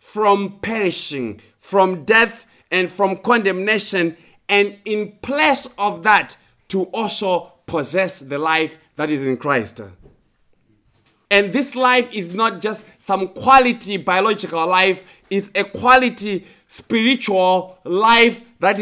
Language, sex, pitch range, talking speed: English, male, 160-220 Hz, 120 wpm